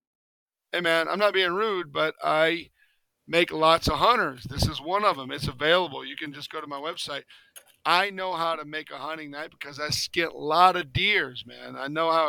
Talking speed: 220 wpm